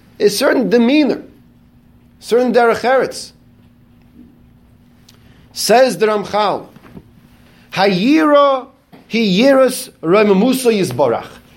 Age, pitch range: 40-59, 180-245 Hz